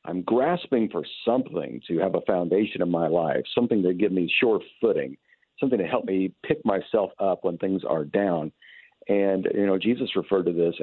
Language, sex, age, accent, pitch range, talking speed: English, male, 50-69, American, 95-115 Hz, 195 wpm